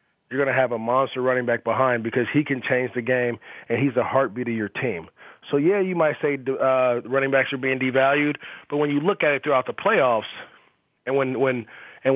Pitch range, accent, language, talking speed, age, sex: 125-145 Hz, American, English, 225 wpm, 30-49, male